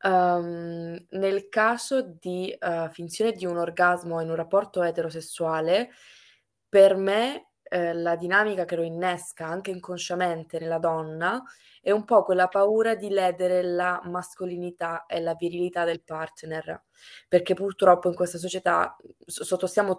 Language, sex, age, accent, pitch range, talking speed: Italian, female, 20-39, native, 170-190 Hz, 130 wpm